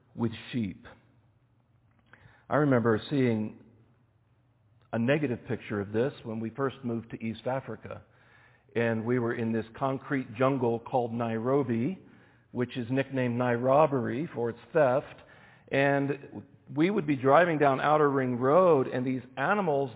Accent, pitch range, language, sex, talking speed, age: American, 115-150 Hz, English, male, 135 wpm, 50-69